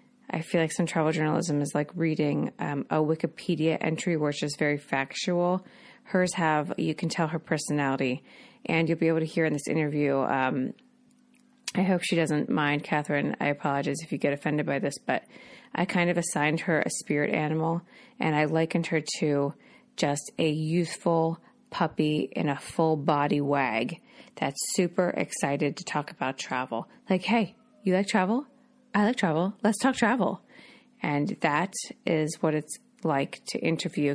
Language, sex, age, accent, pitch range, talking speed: English, female, 30-49, American, 150-200 Hz, 170 wpm